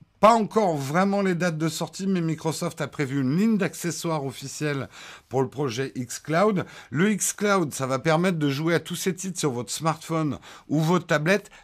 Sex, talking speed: male, 190 wpm